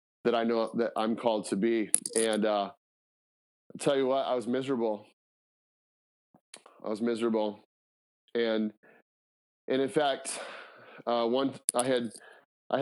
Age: 30-49